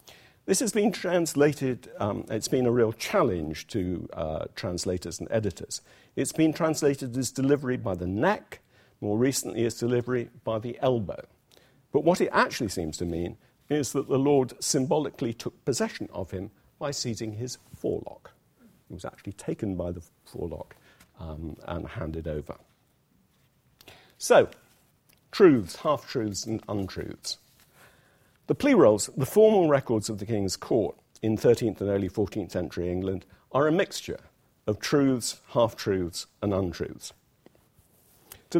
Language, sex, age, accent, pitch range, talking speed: English, male, 50-69, British, 90-130 Hz, 145 wpm